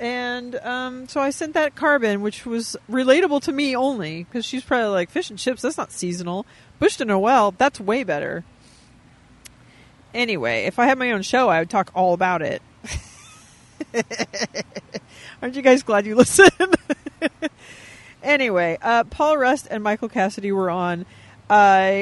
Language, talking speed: English, 160 wpm